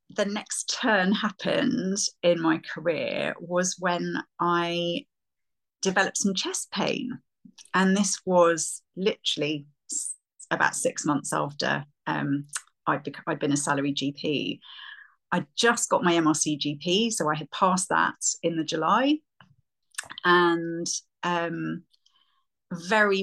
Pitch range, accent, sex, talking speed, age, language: 150-190 Hz, British, female, 120 wpm, 30-49, English